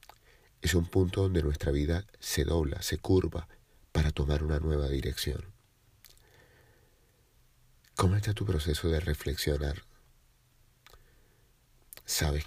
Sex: male